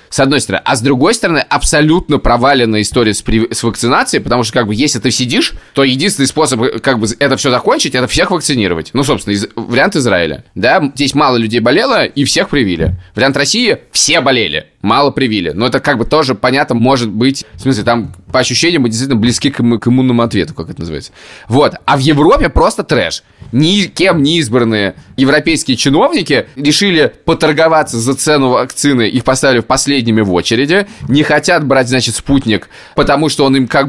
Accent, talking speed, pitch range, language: native, 185 wpm, 115-145 Hz, Russian